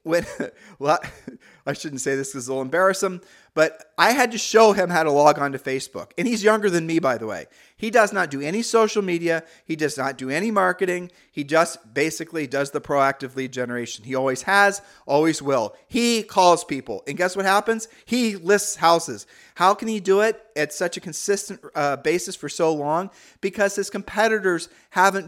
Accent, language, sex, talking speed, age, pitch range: American, English, male, 200 wpm, 40-59, 150-205 Hz